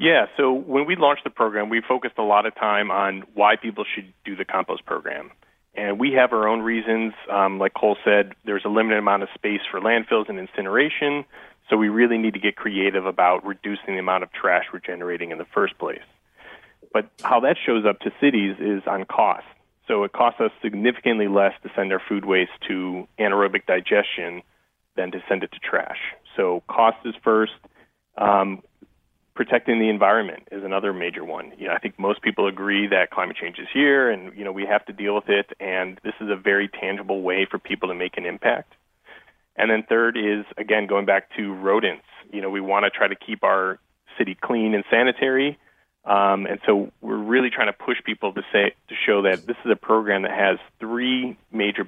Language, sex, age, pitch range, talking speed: English, male, 30-49, 95-110 Hz, 205 wpm